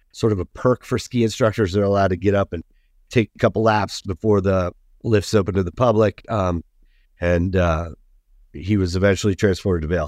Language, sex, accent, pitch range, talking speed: English, male, American, 95-115 Hz, 195 wpm